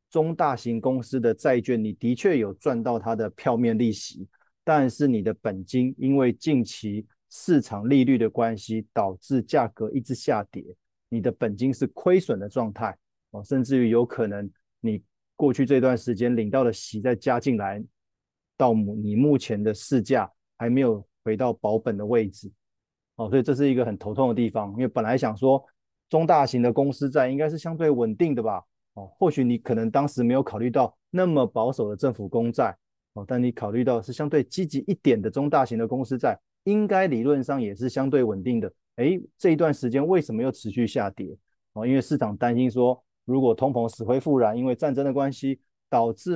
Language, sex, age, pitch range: Chinese, male, 30-49, 110-135 Hz